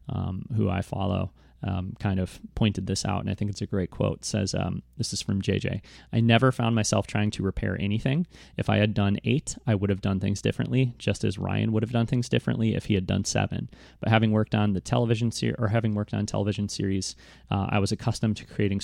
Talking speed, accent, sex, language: 240 wpm, American, male, English